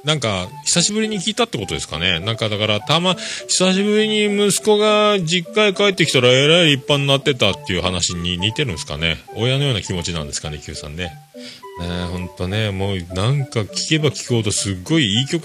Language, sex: Japanese, male